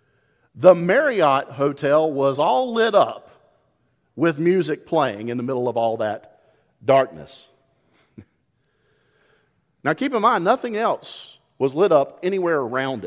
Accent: American